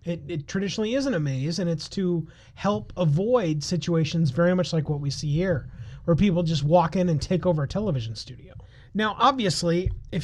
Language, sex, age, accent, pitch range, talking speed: English, male, 30-49, American, 135-185 Hz, 195 wpm